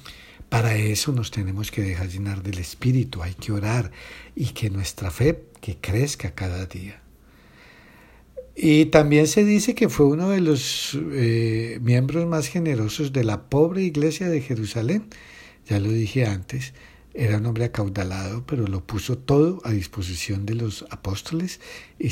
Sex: male